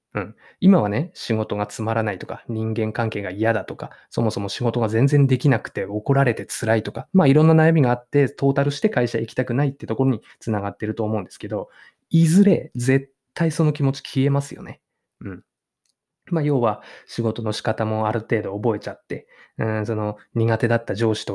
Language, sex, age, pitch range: Japanese, male, 20-39, 110-155 Hz